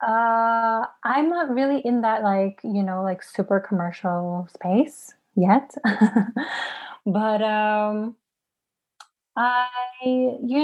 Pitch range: 200-230 Hz